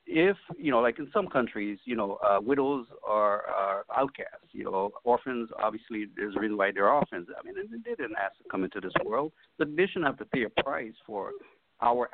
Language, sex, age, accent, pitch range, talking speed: English, male, 60-79, American, 110-150 Hz, 220 wpm